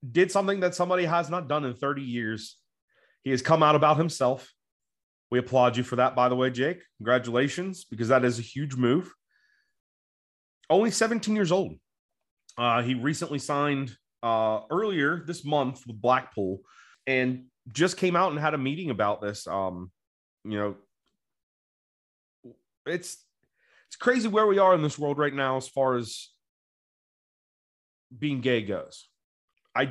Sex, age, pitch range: male, 30-49, 110-145 Hz